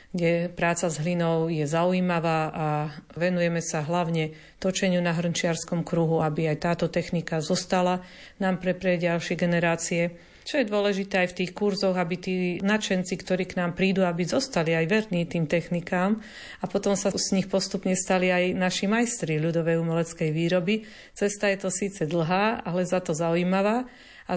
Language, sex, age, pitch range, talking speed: Slovak, female, 50-69, 175-200 Hz, 165 wpm